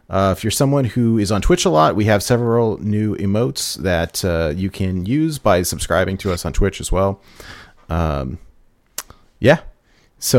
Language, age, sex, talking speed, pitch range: English, 30-49, male, 180 wpm, 90-115 Hz